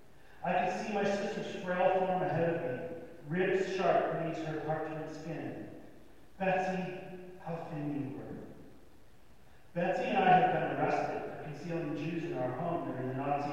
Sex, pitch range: male, 145-185 Hz